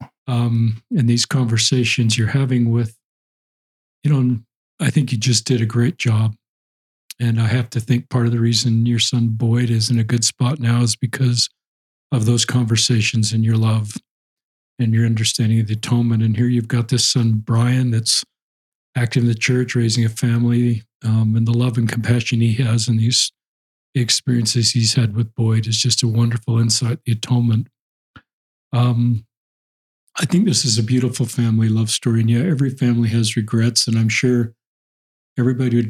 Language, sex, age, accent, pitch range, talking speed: English, male, 40-59, American, 115-125 Hz, 175 wpm